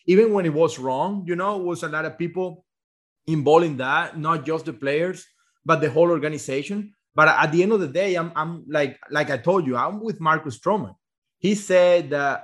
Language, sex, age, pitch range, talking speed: English, male, 30-49, 155-200 Hz, 215 wpm